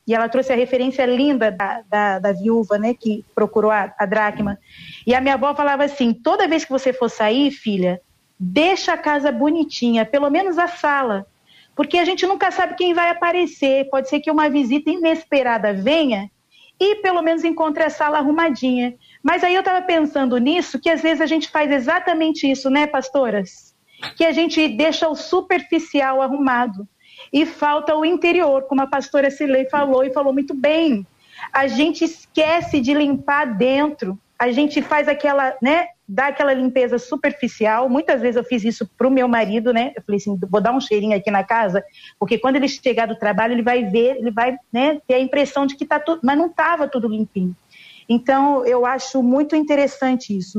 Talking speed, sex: 190 wpm, female